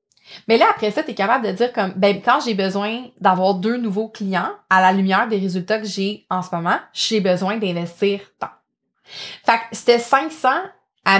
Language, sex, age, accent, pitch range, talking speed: French, female, 20-39, Canadian, 190-225 Hz, 200 wpm